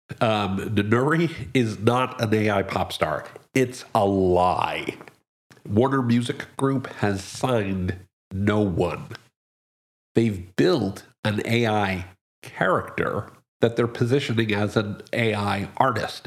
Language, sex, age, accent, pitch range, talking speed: English, male, 50-69, American, 100-125 Hz, 110 wpm